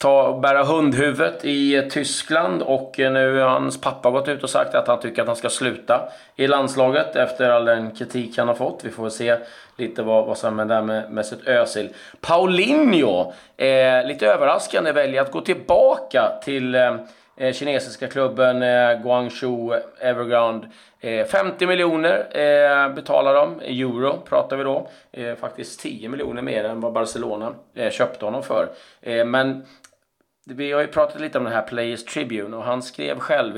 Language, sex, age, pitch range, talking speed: Swedish, male, 30-49, 110-135 Hz, 170 wpm